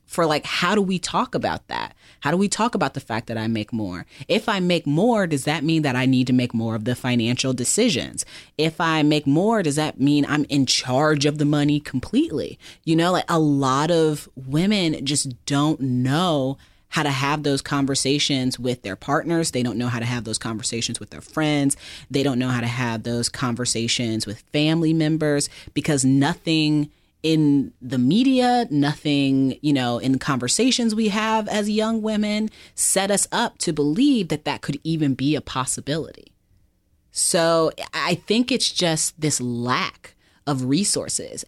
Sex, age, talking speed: female, 30-49, 180 wpm